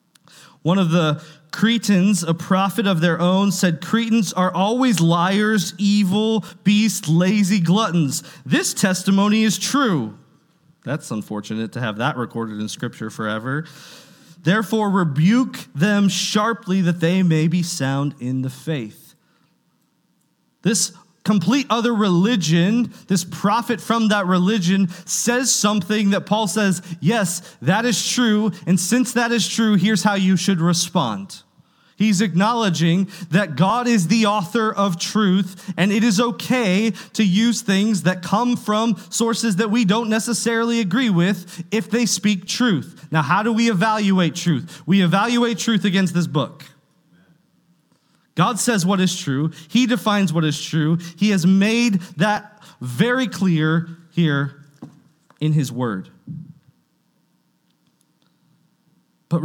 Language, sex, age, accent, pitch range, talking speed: English, male, 20-39, American, 160-210 Hz, 135 wpm